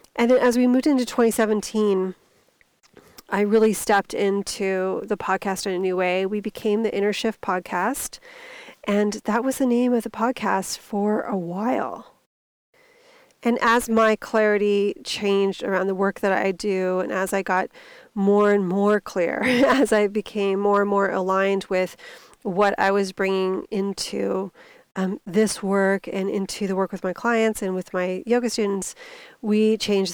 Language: English